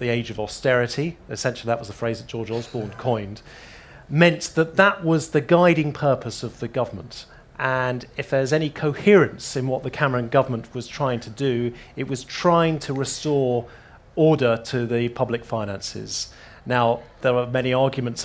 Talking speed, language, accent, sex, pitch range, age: 170 wpm, English, British, male, 120-155 Hz, 40-59